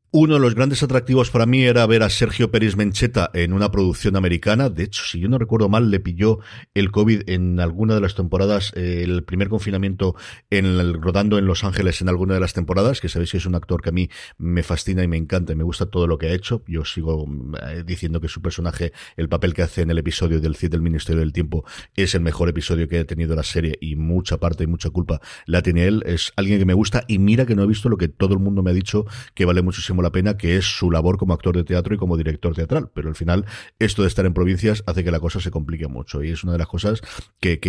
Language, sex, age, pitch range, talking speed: Spanish, male, 40-59, 85-105 Hz, 265 wpm